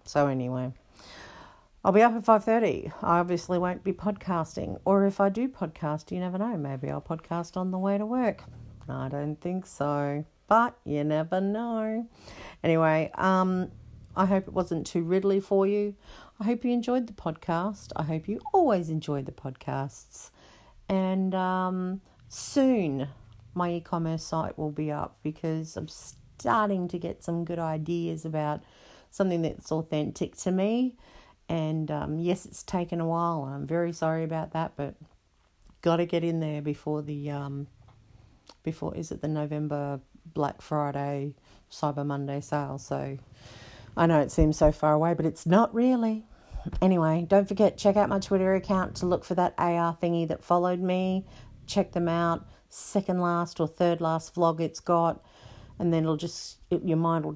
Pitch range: 150-190 Hz